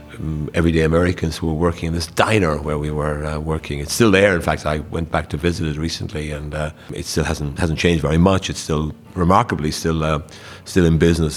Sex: male